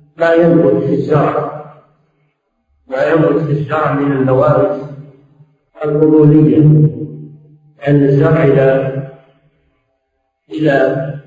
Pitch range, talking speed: 145-170 Hz, 70 wpm